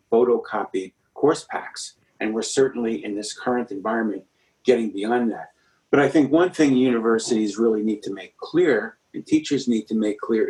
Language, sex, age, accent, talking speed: English, male, 50-69, American, 170 wpm